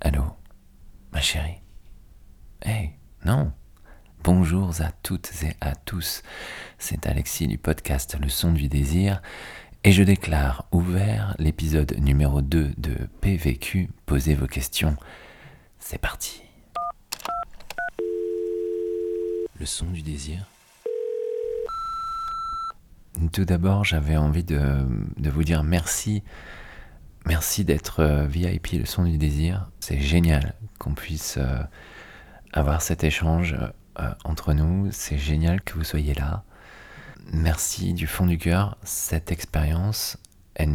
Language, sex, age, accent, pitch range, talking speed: French, male, 40-59, French, 75-90 Hz, 115 wpm